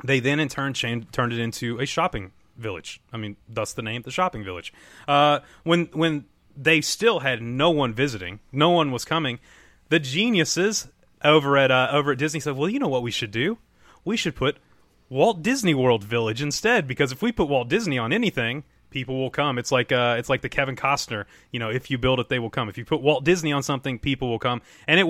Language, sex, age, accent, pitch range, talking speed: English, male, 30-49, American, 120-155 Hz, 225 wpm